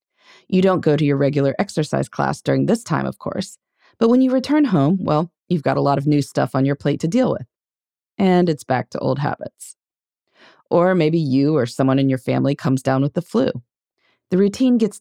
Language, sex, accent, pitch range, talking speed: English, female, American, 140-215 Hz, 215 wpm